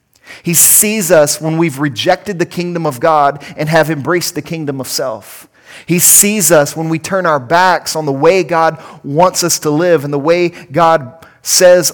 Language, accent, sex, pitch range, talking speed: English, American, male, 130-160 Hz, 190 wpm